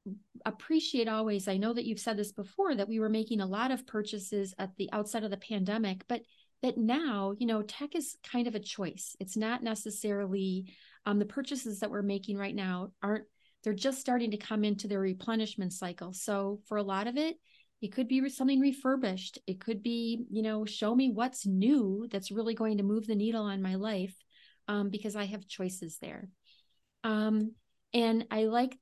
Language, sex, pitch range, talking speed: English, female, 195-230 Hz, 200 wpm